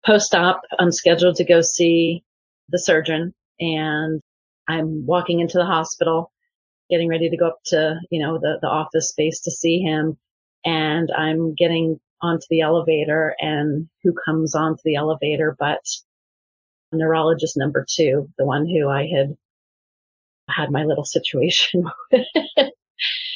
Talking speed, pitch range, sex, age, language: 140 wpm, 155-180 Hz, female, 30-49, English